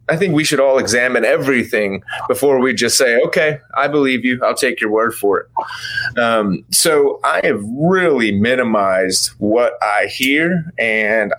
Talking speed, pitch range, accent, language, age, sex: 165 wpm, 115-165 Hz, American, English, 30-49, male